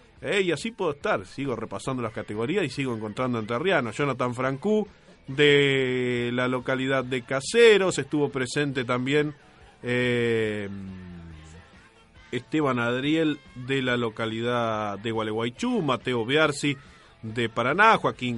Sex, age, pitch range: male, 30-49, 115-150 Hz